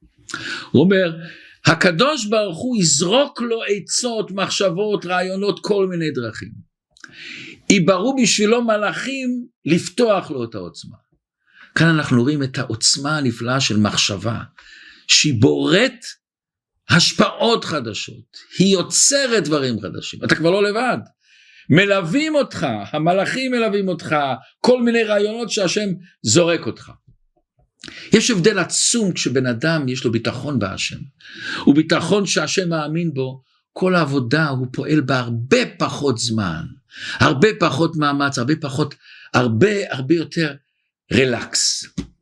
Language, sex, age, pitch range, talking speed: Hebrew, male, 50-69, 125-200 Hz, 115 wpm